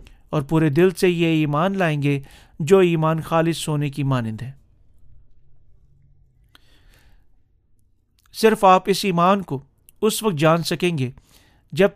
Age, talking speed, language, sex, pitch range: 40-59, 130 wpm, Urdu, male, 125-190 Hz